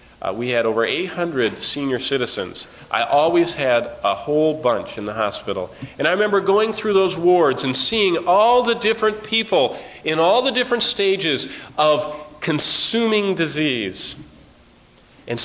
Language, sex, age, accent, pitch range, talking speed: English, male, 40-59, American, 115-175 Hz, 150 wpm